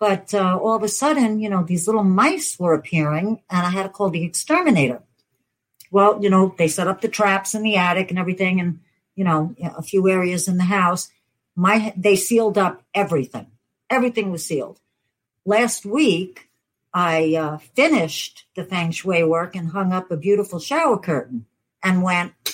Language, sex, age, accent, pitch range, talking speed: English, female, 60-79, American, 160-210 Hz, 180 wpm